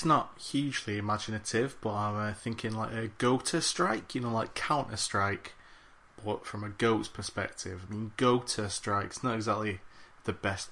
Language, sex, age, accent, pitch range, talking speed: English, male, 20-39, British, 105-125 Hz, 170 wpm